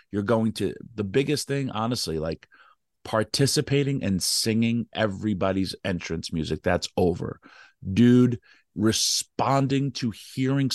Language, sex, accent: English, male, American